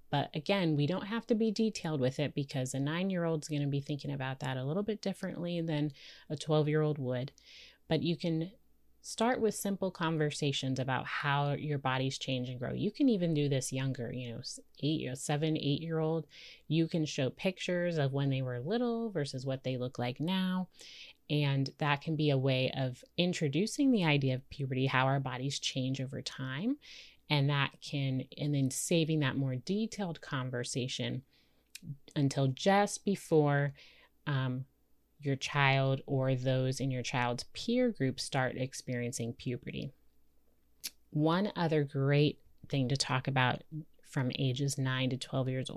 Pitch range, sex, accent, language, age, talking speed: 130-165 Hz, female, American, English, 30-49, 165 wpm